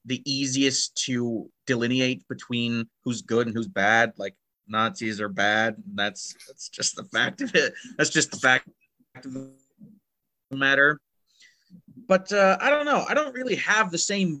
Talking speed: 165 wpm